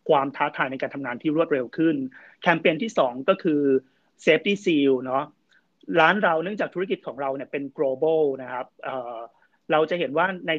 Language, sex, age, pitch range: Thai, male, 30-49, 140-185 Hz